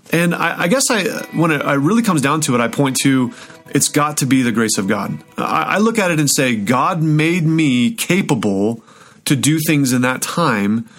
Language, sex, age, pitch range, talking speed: English, male, 30-49, 120-150 Hz, 215 wpm